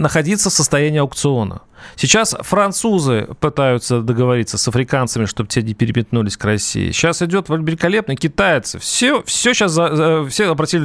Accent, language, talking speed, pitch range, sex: native, Russian, 140 wpm, 120-170 Hz, male